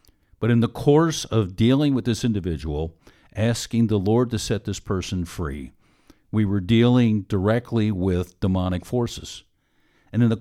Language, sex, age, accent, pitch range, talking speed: English, male, 50-69, American, 95-115 Hz, 155 wpm